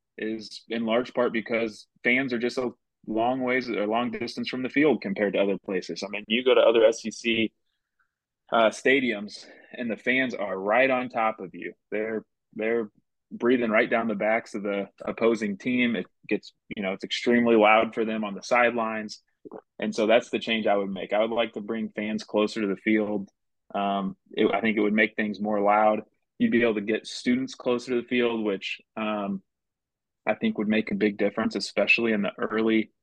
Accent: American